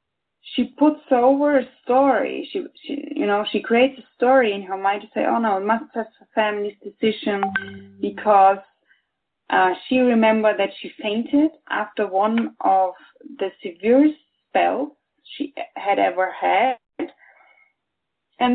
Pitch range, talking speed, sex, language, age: 210-290 Hz, 140 wpm, female, English, 30-49